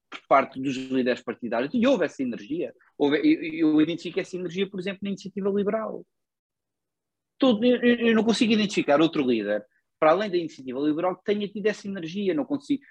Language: Portuguese